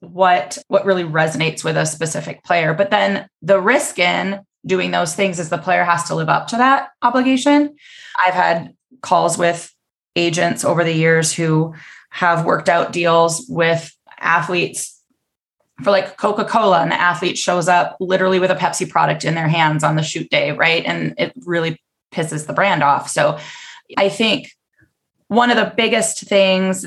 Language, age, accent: English, 20-39, American